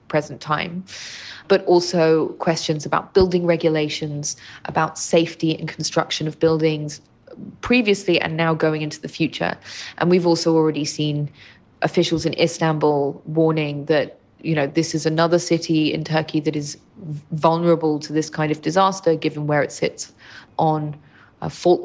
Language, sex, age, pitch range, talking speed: English, female, 20-39, 150-165 Hz, 150 wpm